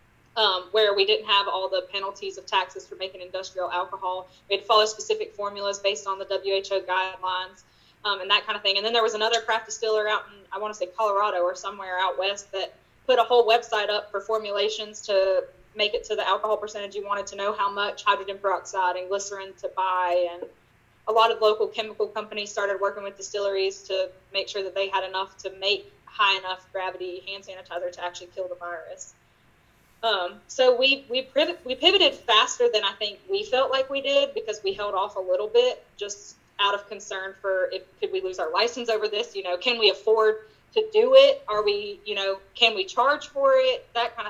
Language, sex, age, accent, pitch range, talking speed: English, female, 10-29, American, 190-220 Hz, 215 wpm